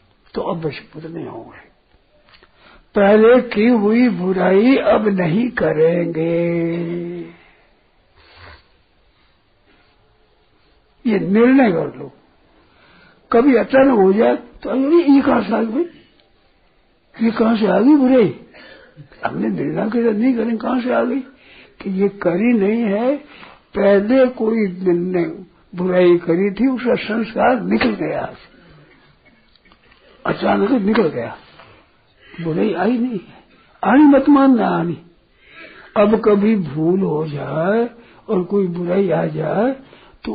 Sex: male